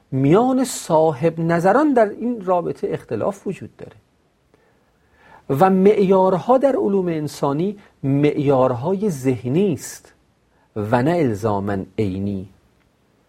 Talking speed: 95 wpm